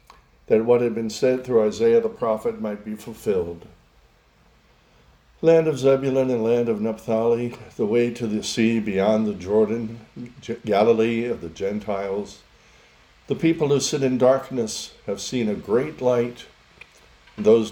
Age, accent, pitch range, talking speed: 60-79, American, 95-120 Hz, 145 wpm